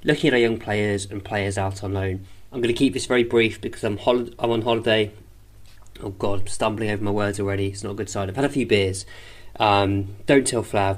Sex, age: male, 20-39